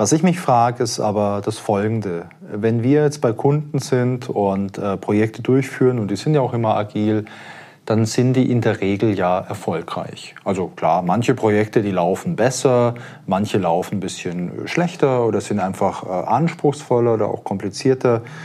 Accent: German